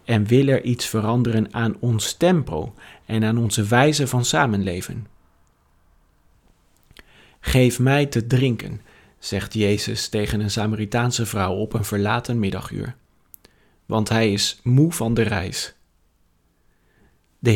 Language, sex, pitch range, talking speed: Dutch, male, 105-130 Hz, 125 wpm